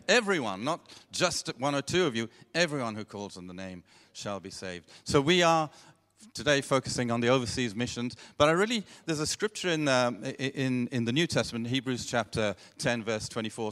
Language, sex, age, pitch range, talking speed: English, male, 50-69, 115-160 Hz, 190 wpm